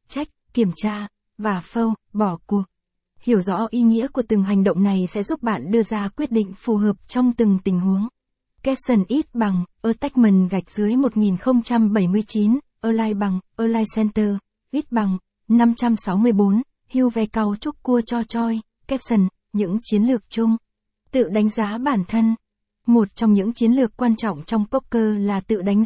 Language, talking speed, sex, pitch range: Vietnamese, 165 wpm, female, 205-240 Hz